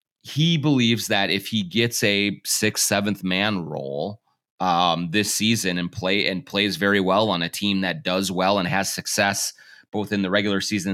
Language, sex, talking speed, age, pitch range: English, male, 185 wpm, 30-49, 95-115 Hz